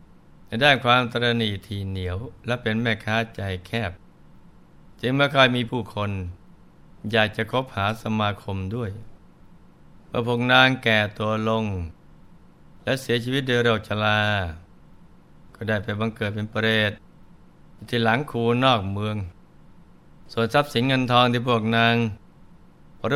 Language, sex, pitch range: Thai, male, 105-120 Hz